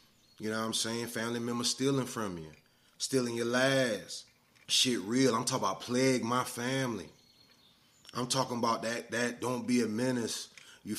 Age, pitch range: 20-39, 115-135 Hz